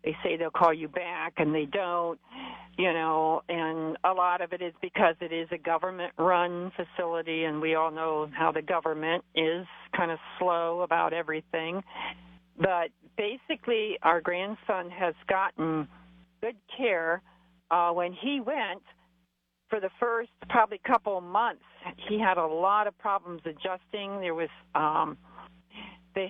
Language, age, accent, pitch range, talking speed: English, 50-69, American, 165-190 Hz, 150 wpm